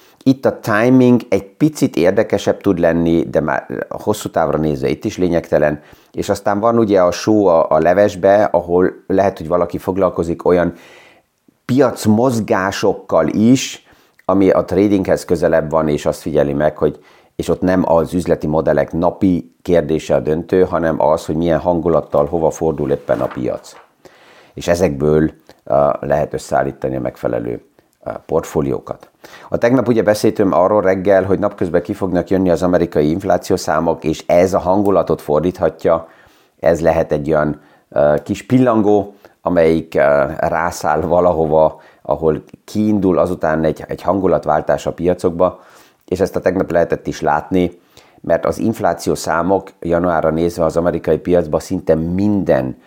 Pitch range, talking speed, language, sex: 80-95 Hz, 145 wpm, Hungarian, male